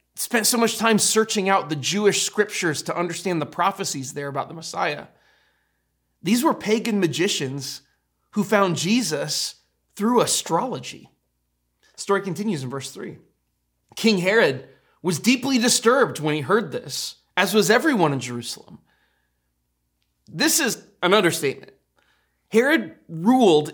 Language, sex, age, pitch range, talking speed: English, male, 30-49, 150-205 Hz, 130 wpm